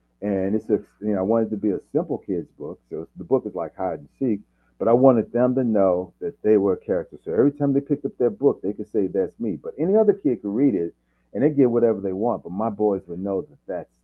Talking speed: 280 wpm